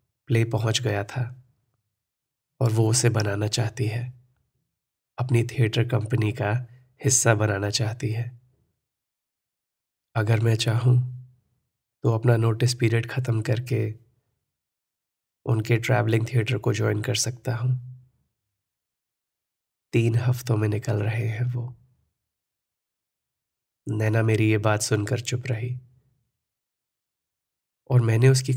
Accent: native